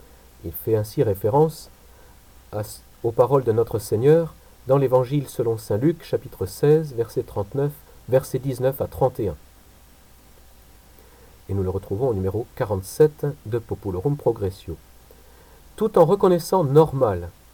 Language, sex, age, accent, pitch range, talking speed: French, male, 50-69, French, 100-155 Hz, 125 wpm